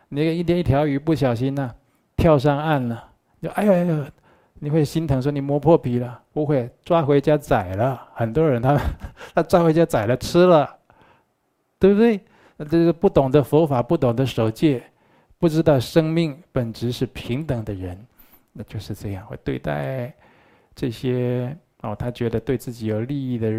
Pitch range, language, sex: 110-145 Hz, Chinese, male